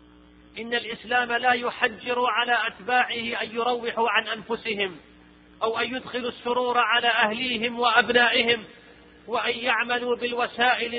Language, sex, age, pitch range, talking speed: Arabic, male, 40-59, 230-250 Hz, 110 wpm